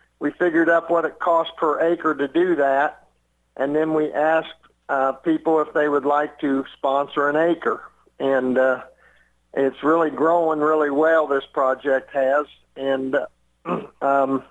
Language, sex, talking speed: English, male, 155 wpm